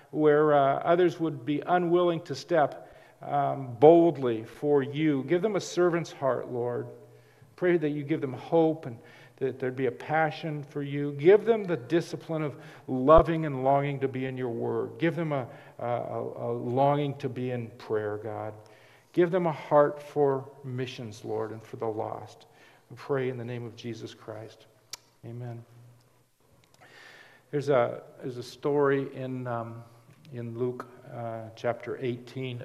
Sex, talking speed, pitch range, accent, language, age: male, 160 wpm, 115-145 Hz, American, English, 50-69